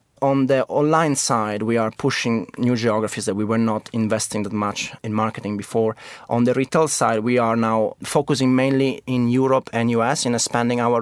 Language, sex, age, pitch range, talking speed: English, male, 30-49, 115-145 Hz, 190 wpm